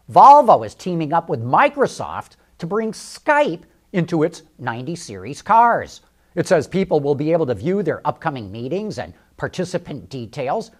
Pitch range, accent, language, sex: 150-210 Hz, American, English, male